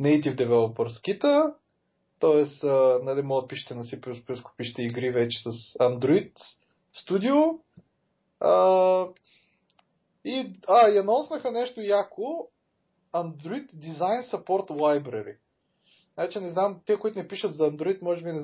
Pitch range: 150-215 Hz